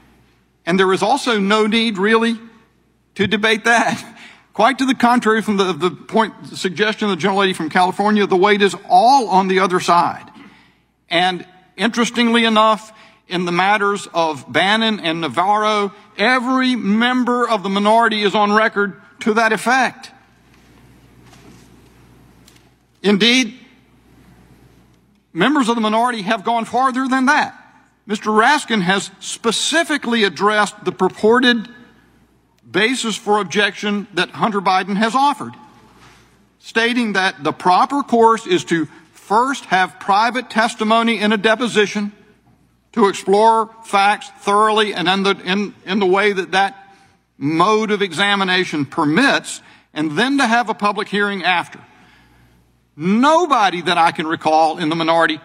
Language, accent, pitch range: English, American, 185-230 Hz